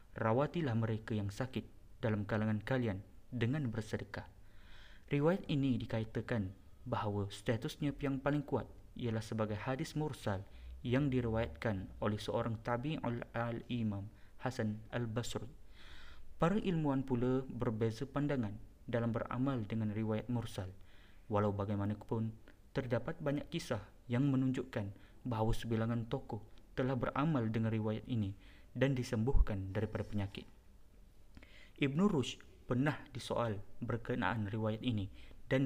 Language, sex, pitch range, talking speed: Malay, male, 105-130 Hz, 110 wpm